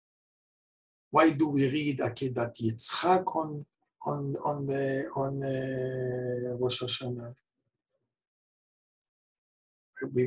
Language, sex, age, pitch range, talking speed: English, male, 60-79, 130-200 Hz, 90 wpm